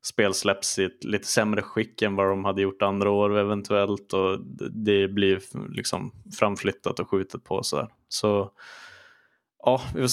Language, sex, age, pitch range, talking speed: Swedish, male, 20-39, 95-115 Hz, 170 wpm